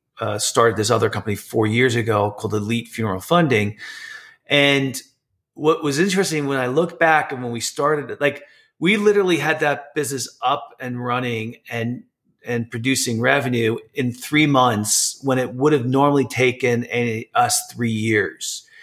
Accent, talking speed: American, 160 wpm